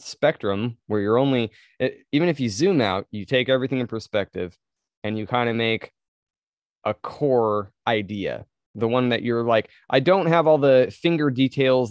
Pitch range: 115-140 Hz